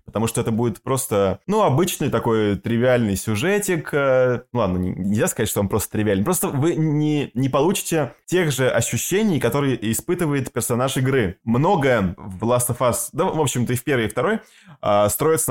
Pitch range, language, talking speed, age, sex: 115-150 Hz, Russian, 170 wpm, 20-39, male